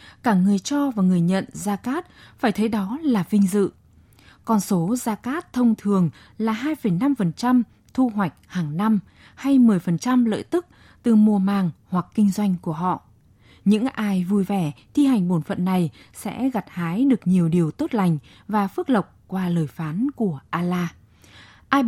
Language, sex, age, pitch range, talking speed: Vietnamese, female, 20-39, 180-245 Hz, 175 wpm